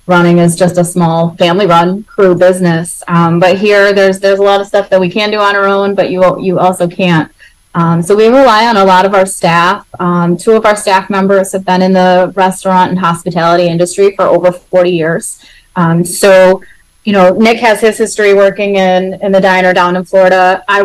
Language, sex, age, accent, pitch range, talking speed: English, female, 20-39, American, 180-205 Hz, 215 wpm